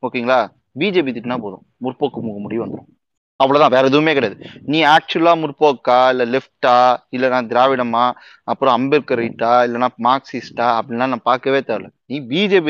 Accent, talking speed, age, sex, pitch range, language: native, 140 wpm, 30-49, male, 125-165 Hz, Tamil